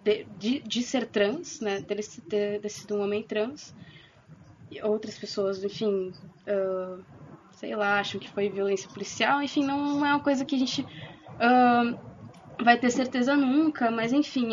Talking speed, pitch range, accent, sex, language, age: 170 wpm, 205-230 Hz, Brazilian, female, Portuguese, 20-39